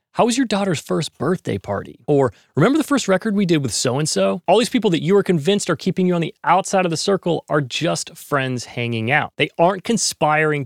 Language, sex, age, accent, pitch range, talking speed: English, male, 30-49, American, 115-165 Hz, 225 wpm